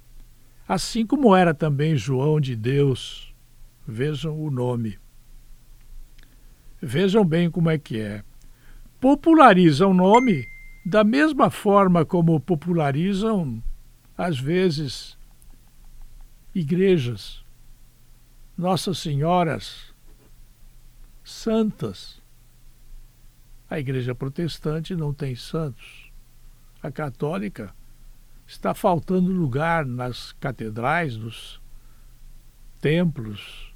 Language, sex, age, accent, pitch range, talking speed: Portuguese, male, 60-79, Brazilian, 120-175 Hz, 80 wpm